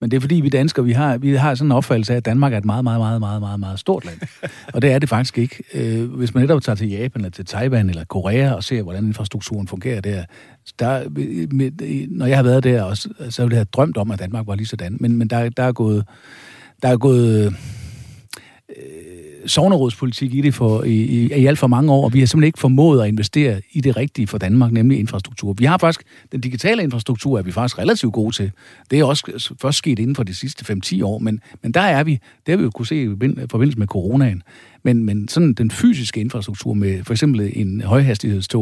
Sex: male